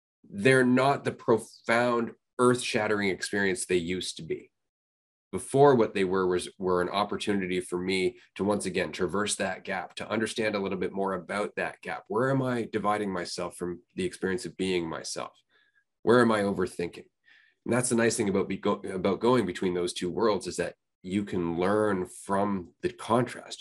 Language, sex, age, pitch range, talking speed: English, male, 20-39, 90-125 Hz, 180 wpm